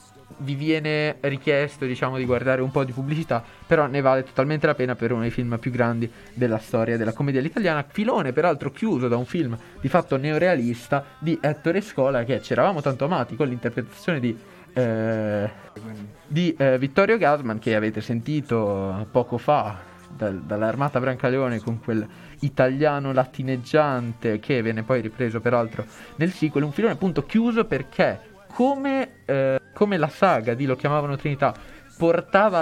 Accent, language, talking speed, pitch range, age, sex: native, Italian, 155 wpm, 115-155 Hz, 20-39, male